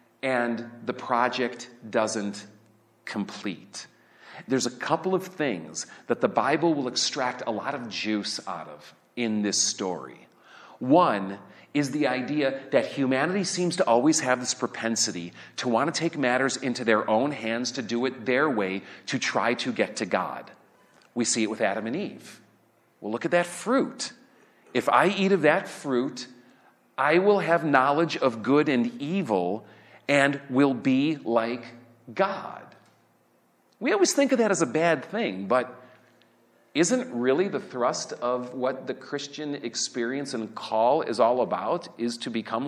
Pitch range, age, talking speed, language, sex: 115-160 Hz, 40-59, 160 wpm, English, male